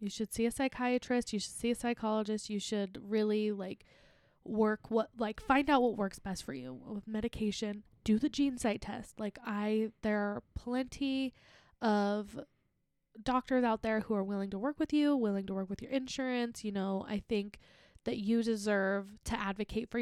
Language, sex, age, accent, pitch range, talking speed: English, female, 10-29, American, 200-235 Hz, 190 wpm